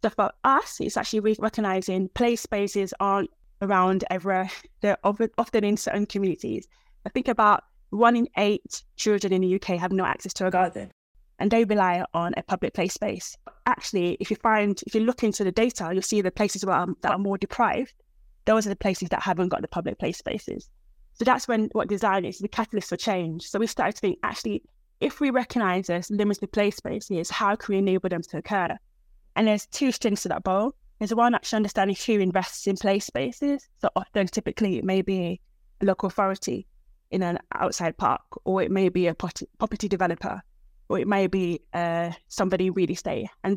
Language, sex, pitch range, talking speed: English, female, 185-215 Hz, 200 wpm